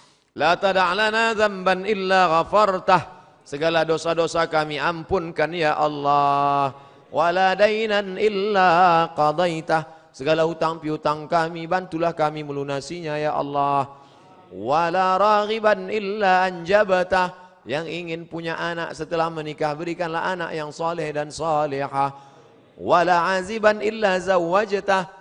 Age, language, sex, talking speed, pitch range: 30-49, Indonesian, male, 110 wpm, 150-190 Hz